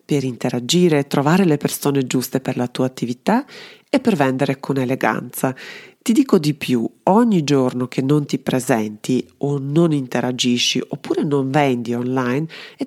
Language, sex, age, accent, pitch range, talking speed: Italian, female, 40-59, native, 125-165 Hz, 155 wpm